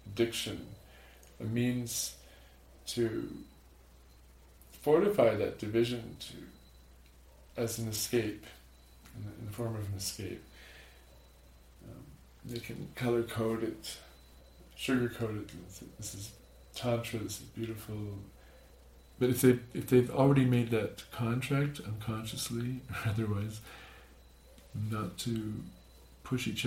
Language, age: English, 40-59